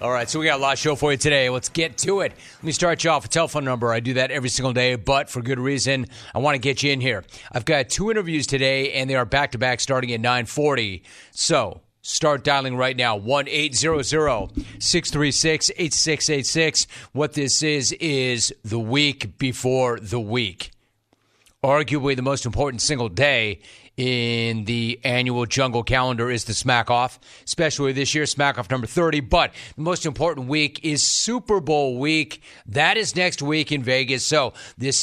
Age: 40-59